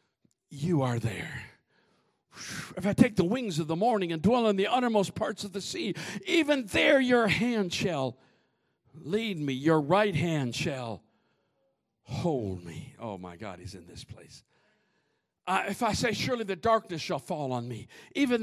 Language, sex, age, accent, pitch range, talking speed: English, male, 60-79, American, 150-245 Hz, 165 wpm